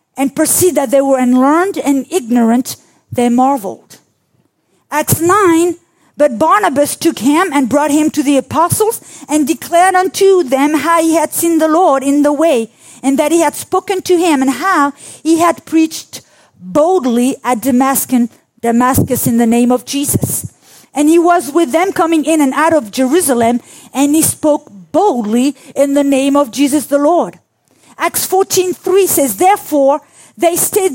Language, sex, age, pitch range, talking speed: English, female, 40-59, 275-345 Hz, 160 wpm